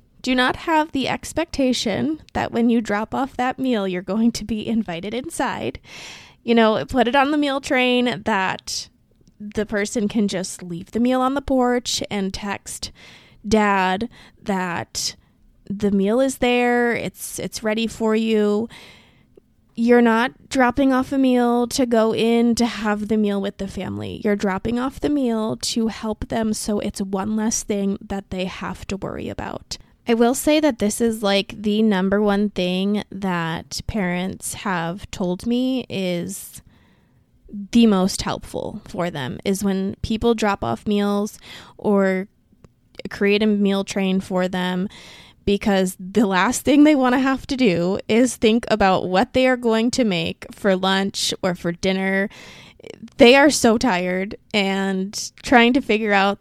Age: 20-39